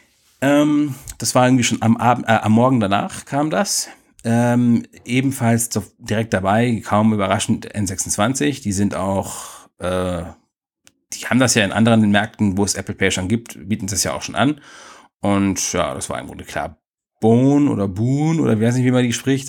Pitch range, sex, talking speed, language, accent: 100-120 Hz, male, 190 wpm, German, German